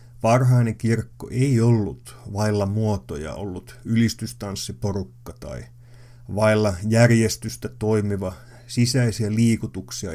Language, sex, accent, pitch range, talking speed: Finnish, male, native, 110-120 Hz, 85 wpm